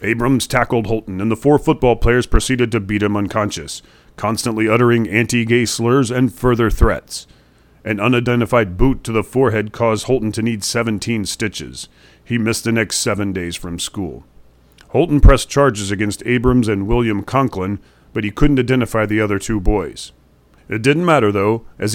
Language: English